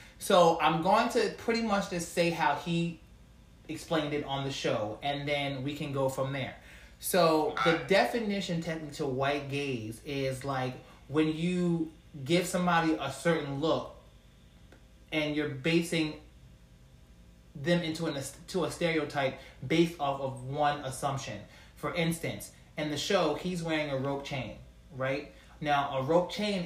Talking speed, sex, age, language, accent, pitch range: 150 wpm, male, 30-49, English, American, 140-175 Hz